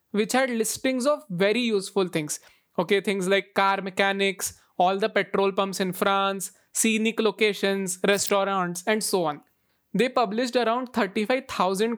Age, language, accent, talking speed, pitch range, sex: 20-39, English, Indian, 140 wpm, 195-240 Hz, male